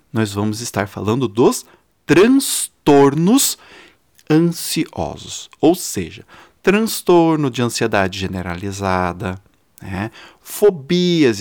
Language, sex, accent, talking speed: Portuguese, male, Brazilian, 80 wpm